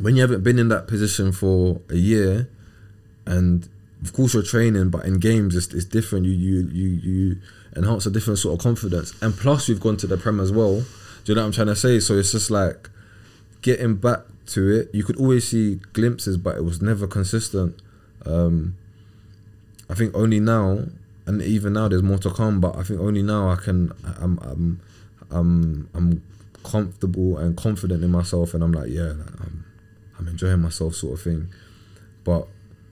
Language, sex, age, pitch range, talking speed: English, male, 20-39, 90-105 Hz, 195 wpm